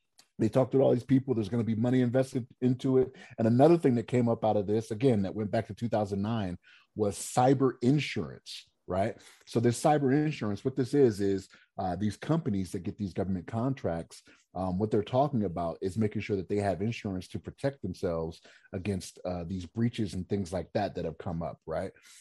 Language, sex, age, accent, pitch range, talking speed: English, male, 30-49, American, 95-125 Hz, 210 wpm